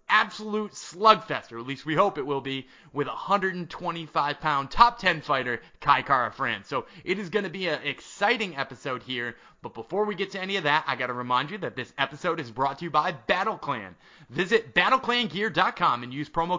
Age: 30-49